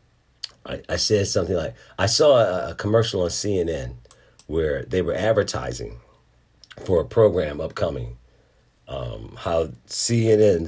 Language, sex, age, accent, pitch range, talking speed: English, male, 50-69, American, 90-125 Hz, 120 wpm